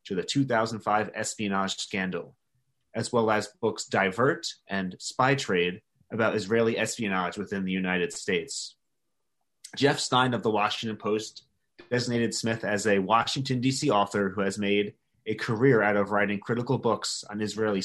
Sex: male